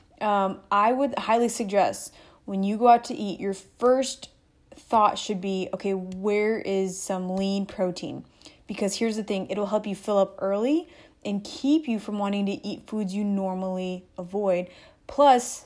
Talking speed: 170 wpm